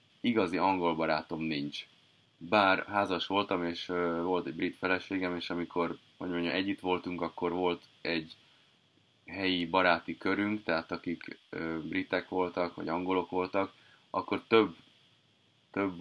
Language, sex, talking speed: Hungarian, male, 130 wpm